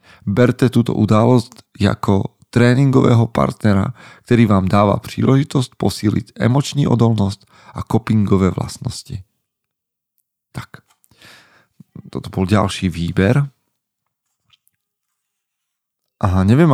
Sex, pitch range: male, 95-115 Hz